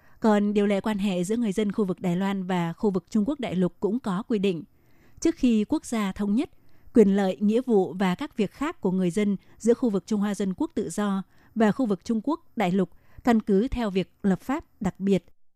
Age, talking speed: 20-39, 245 wpm